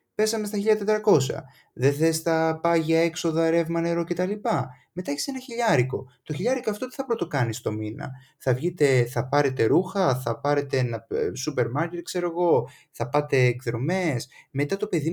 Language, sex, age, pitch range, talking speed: Greek, male, 20-39, 120-165 Hz, 160 wpm